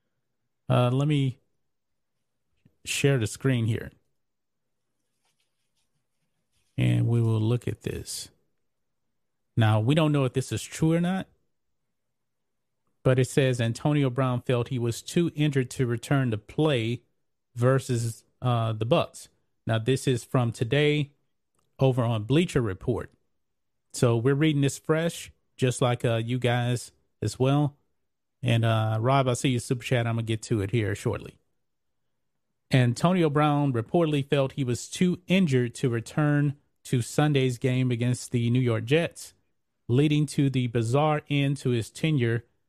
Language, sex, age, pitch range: English, male, 40-59, 120-145 Hz